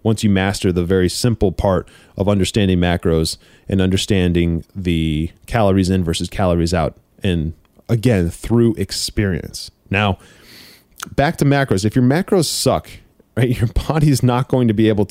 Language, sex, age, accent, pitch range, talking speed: English, male, 30-49, American, 95-120 Hz, 155 wpm